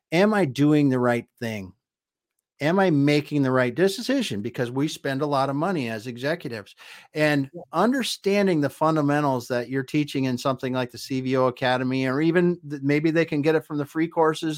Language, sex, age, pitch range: English, male, 50-69, 120-150 Hz